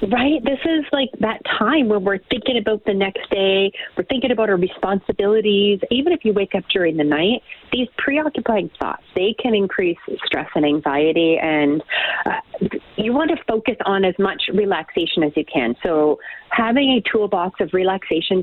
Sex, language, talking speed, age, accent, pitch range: female, English, 175 wpm, 30-49, American, 185-230 Hz